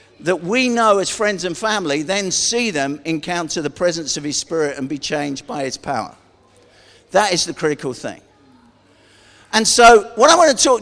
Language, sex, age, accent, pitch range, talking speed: English, male, 50-69, British, 195-275 Hz, 190 wpm